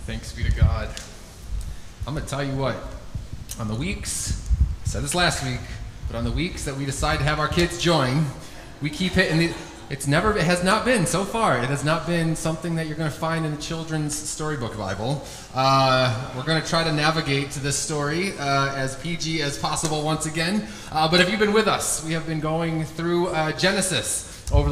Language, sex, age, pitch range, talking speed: English, male, 20-39, 130-165 Hz, 215 wpm